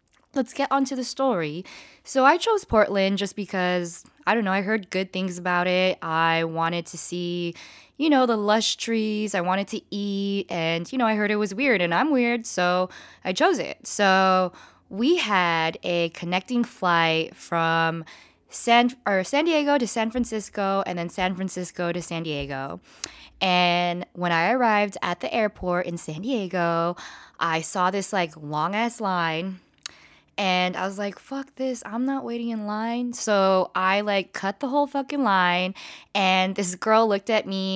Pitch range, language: 175-235 Hz, English